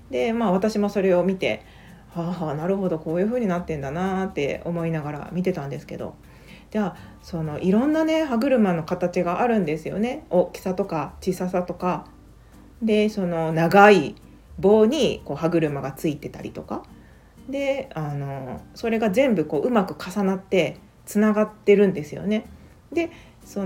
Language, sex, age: Japanese, female, 40-59